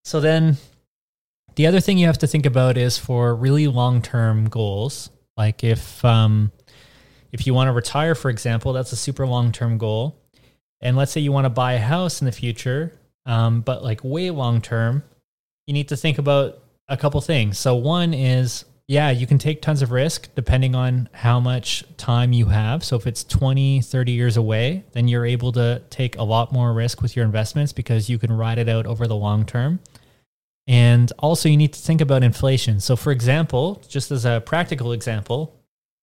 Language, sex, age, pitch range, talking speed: English, male, 20-39, 120-140 Hz, 195 wpm